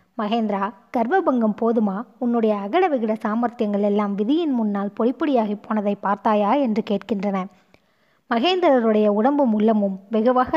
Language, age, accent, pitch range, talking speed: Tamil, 20-39, native, 205-245 Hz, 115 wpm